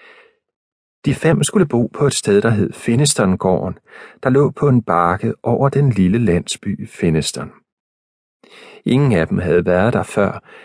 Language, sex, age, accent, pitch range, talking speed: Danish, male, 40-59, native, 95-135 Hz, 150 wpm